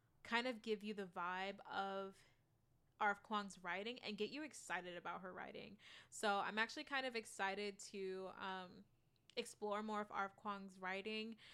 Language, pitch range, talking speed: English, 195-230 Hz, 160 wpm